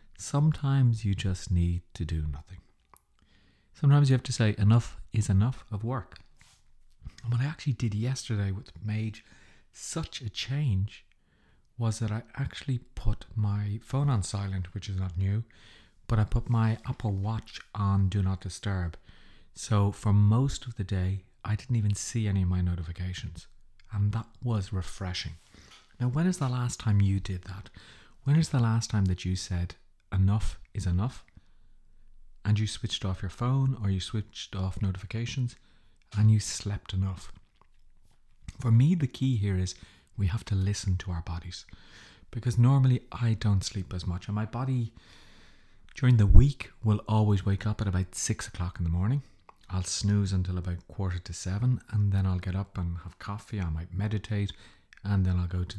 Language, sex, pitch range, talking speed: English, male, 95-115 Hz, 175 wpm